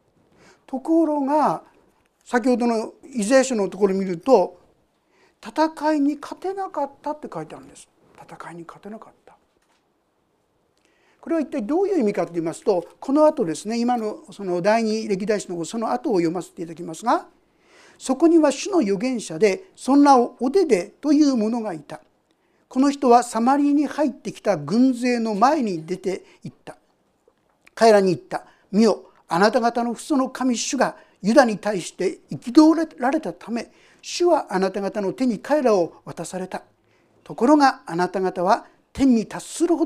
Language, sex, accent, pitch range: Japanese, male, native, 190-285 Hz